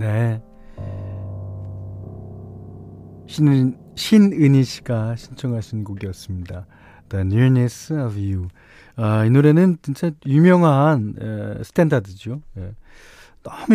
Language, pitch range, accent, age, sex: Korean, 100-155 Hz, native, 40-59, male